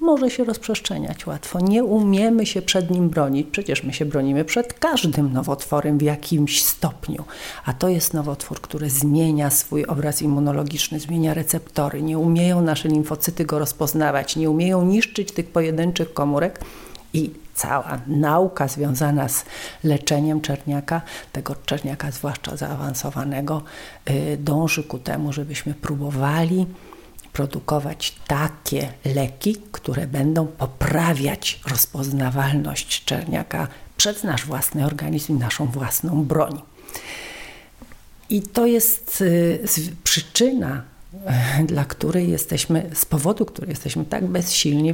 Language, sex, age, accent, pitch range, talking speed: Polish, female, 40-59, native, 145-175 Hz, 120 wpm